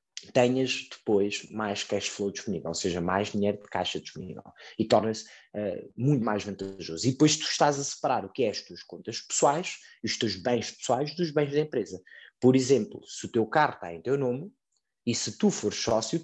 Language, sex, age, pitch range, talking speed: Portuguese, male, 20-39, 105-145 Hz, 205 wpm